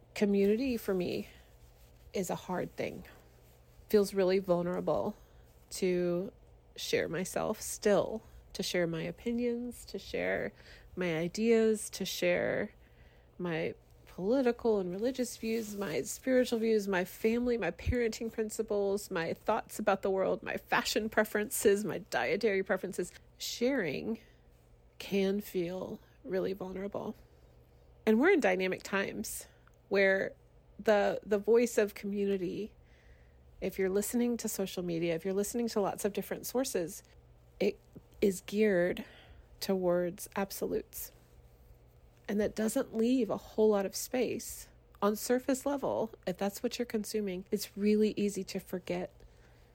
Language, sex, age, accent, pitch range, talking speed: English, female, 30-49, American, 175-220 Hz, 125 wpm